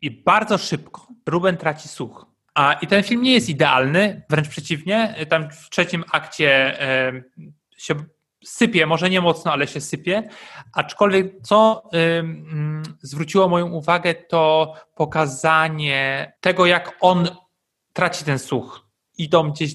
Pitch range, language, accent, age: 140-170 Hz, Polish, native, 30-49